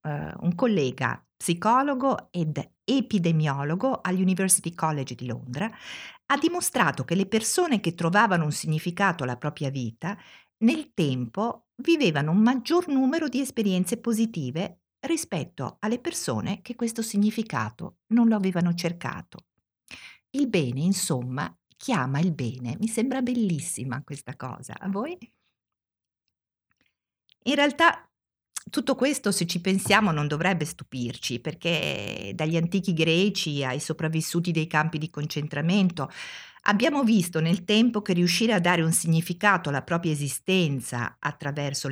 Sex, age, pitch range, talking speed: female, 50-69, 145-220 Hz, 125 wpm